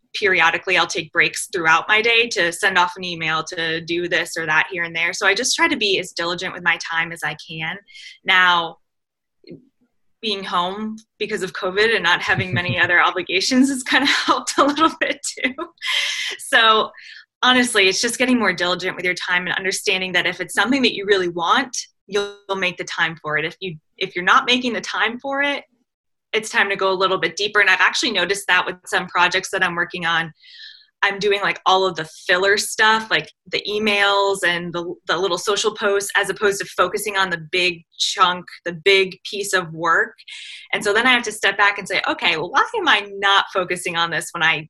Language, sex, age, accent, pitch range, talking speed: English, female, 20-39, American, 175-225 Hz, 215 wpm